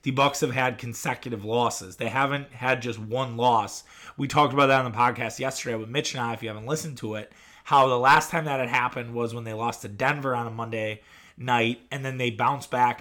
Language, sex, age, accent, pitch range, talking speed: English, male, 20-39, American, 120-150 Hz, 240 wpm